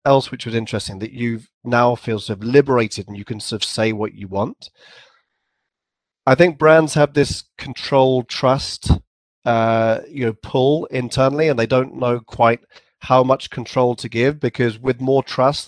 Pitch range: 110-130 Hz